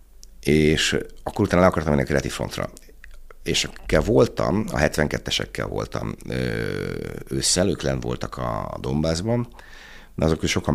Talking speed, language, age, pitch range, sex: 125 wpm, Hungarian, 60-79, 65-75 Hz, male